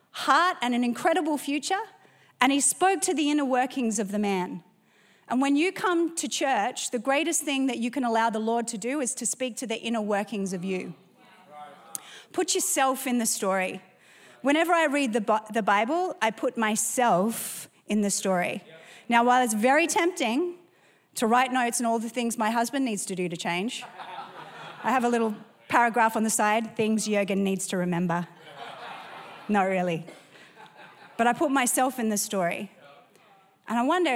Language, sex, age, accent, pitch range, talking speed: English, female, 30-49, Australian, 200-265 Hz, 175 wpm